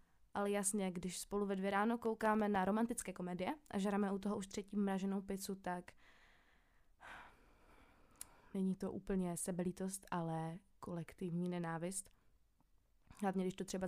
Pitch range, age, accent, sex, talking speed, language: 185-205 Hz, 20-39, native, female, 135 wpm, Czech